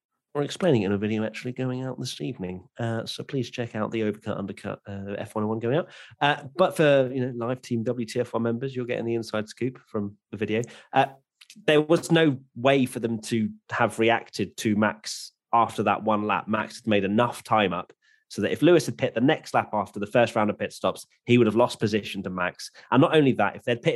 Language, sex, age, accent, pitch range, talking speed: English, male, 30-49, British, 105-130 Hz, 230 wpm